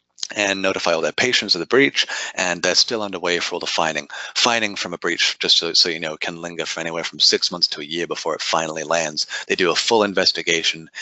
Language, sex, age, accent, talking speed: English, male, 30-49, American, 245 wpm